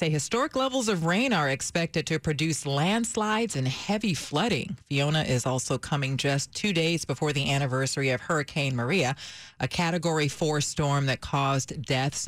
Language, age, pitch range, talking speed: English, 40-59, 135-170 Hz, 160 wpm